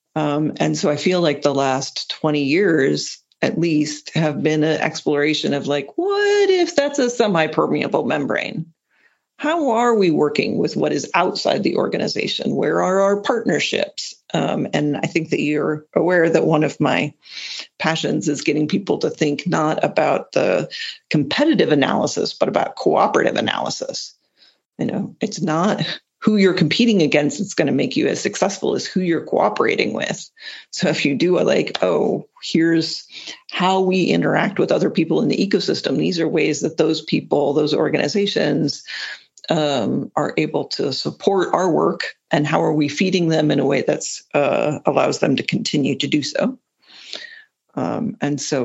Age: 40-59